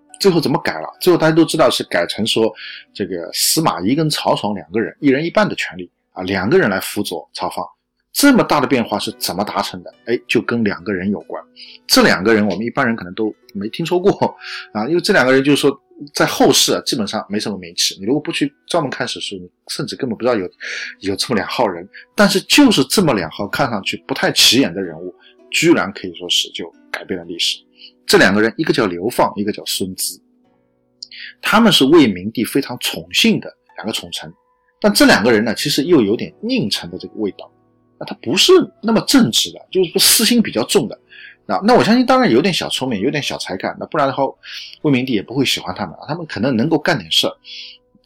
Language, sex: Chinese, male